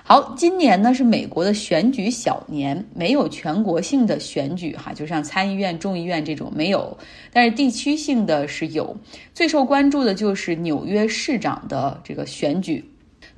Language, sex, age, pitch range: Chinese, female, 20-39, 160-235 Hz